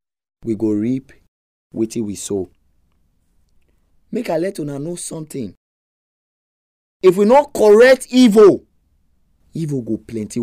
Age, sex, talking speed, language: 30-49, male, 115 wpm, English